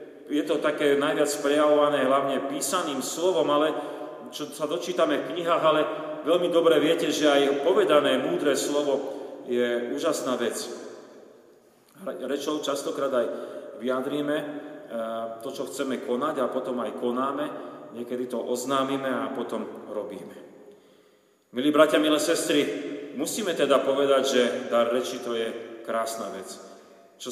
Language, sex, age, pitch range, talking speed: Slovak, male, 40-59, 125-150 Hz, 130 wpm